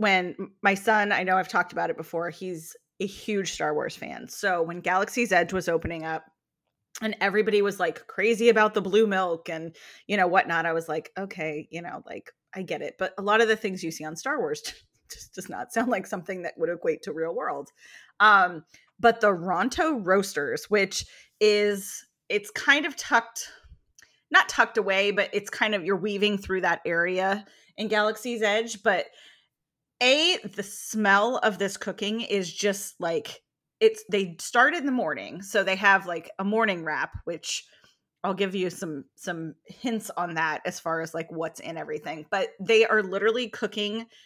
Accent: American